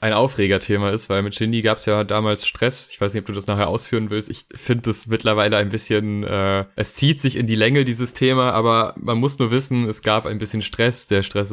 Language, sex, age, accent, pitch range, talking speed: German, male, 20-39, German, 105-120 Hz, 245 wpm